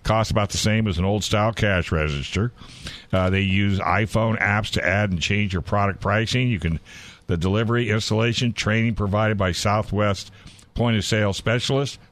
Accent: American